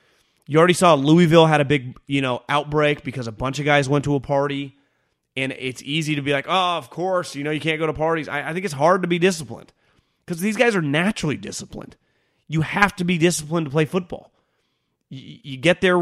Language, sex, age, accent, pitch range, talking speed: English, male, 30-49, American, 125-170 Hz, 230 wpm